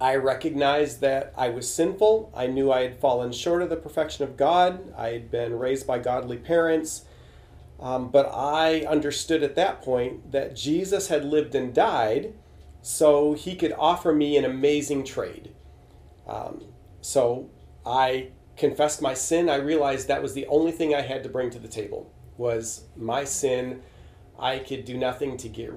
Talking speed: 170 wpm